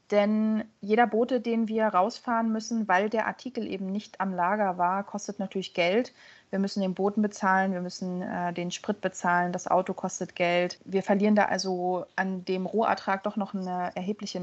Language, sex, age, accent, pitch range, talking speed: German, female, 30-49, German, 185-225 Hz, 185 wpm